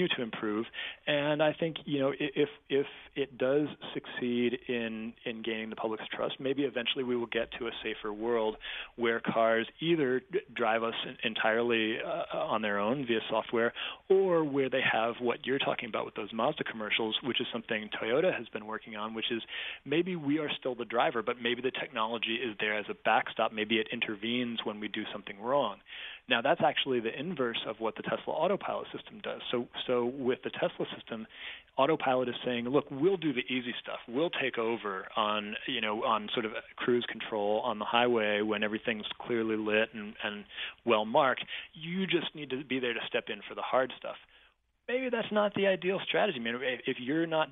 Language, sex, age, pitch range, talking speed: English, male, 30-49, 110-135 Hz, 200 wpm